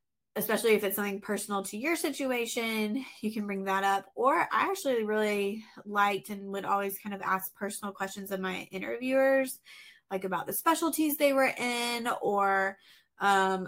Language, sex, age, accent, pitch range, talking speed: English, female, 20-39, American, 195-235 Hz, 165 wpm